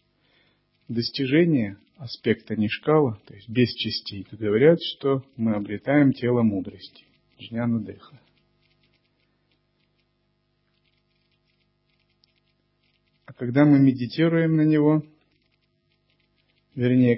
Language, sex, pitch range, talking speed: Russian, male, 110-140 Hz, 75 wpm